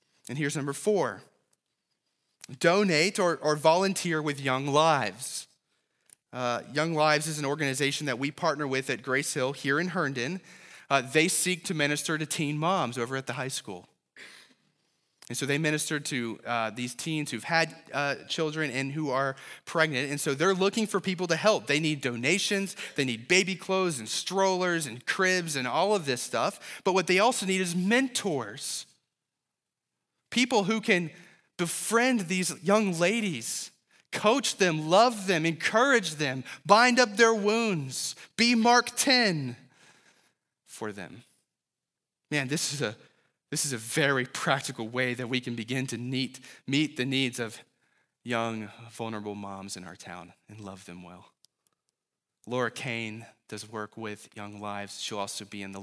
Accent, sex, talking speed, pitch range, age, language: American, male, 160 wpm, 120-180 Hz, 30-49, English